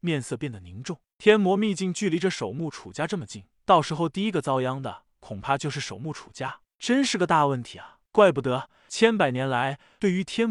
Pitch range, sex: 135-195 Hz, male